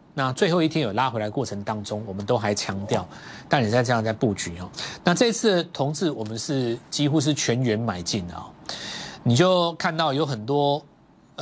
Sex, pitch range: male, 110-155 Hz